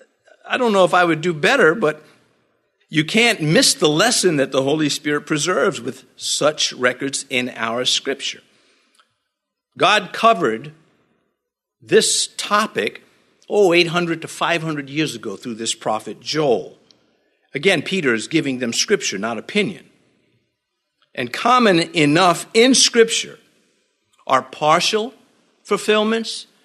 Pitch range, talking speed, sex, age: 130-180 Hz, 125 wpm, male, 50-69